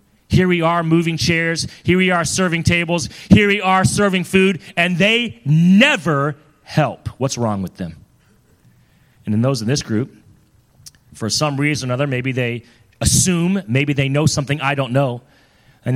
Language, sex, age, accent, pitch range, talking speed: English, male, 30-49, American, 120-175 Hz, 170 wpm